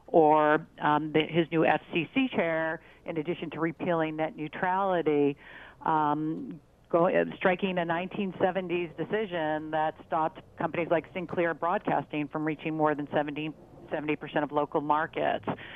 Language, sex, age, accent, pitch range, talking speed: English, female, 50-69, American, 150-175 Hz, 120 wpm